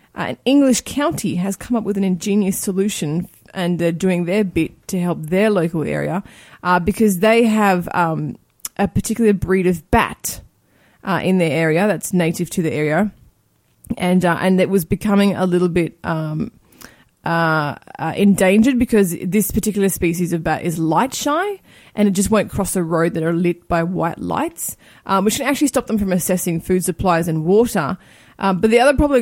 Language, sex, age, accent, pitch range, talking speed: English, female, 20-39, Australian, 170-210 Hz, 190 wpm